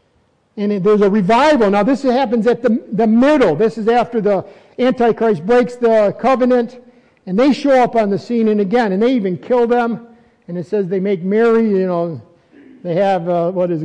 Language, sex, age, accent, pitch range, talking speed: English, male, 50-69, American, 205-245 Hz, 200 wpm